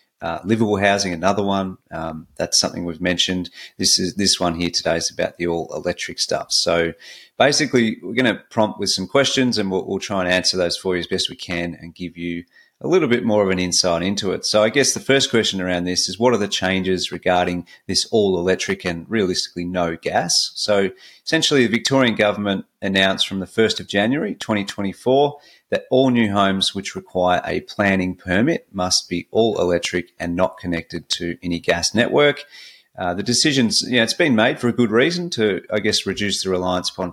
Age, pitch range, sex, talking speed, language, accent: 30-49, 90-105 Hz, male, 205 wpm, English, Australian